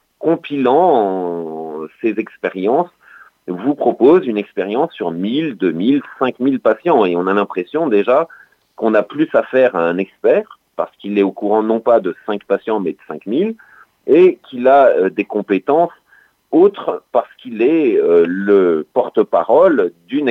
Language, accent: French, French